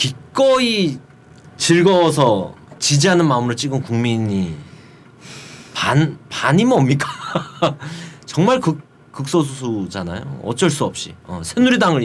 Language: Korean